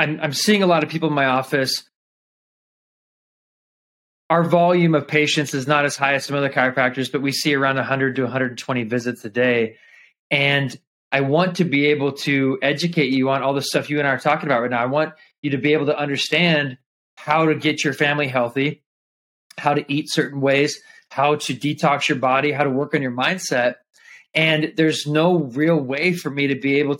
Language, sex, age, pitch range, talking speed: English, male, 20-39, 140-160 Hz, 205 wpm